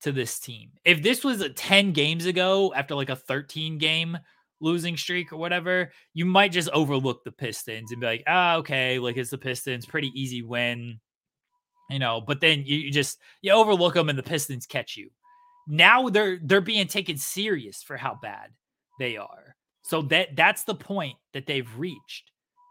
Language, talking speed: English, 185 wpm